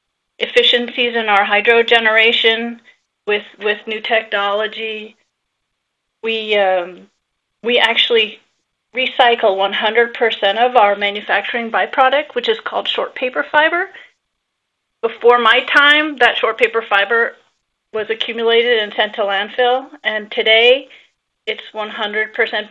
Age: 30-49